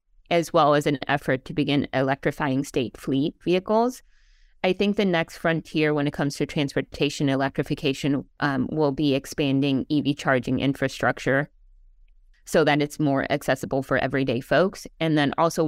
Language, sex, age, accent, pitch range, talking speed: English, female, 20-39, American, 135-165 Hz, 155 wpm